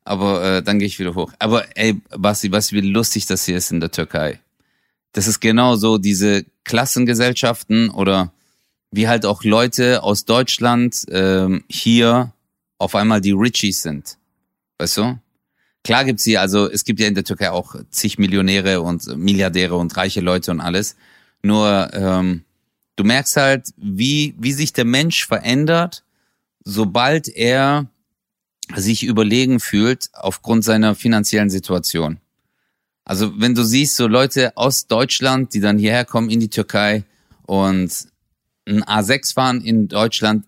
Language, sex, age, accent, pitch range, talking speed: German, male, 30-49, German, 100-125 Hz, 150 wpm